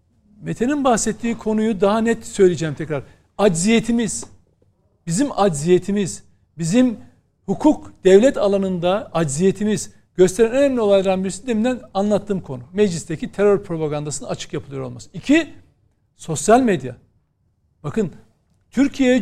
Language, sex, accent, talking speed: Turkish, male, native, 105 wpm